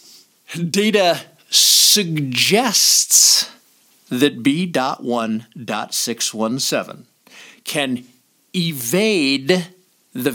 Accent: American